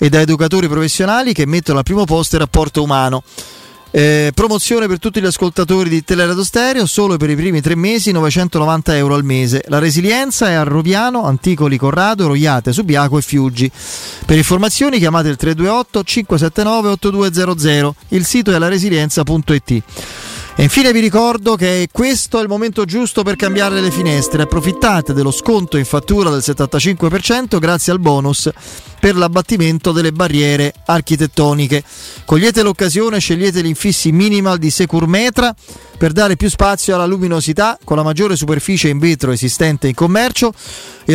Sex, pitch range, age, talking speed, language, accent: male, 150-200 Hz, 30-49, 150 wpm, Italian, native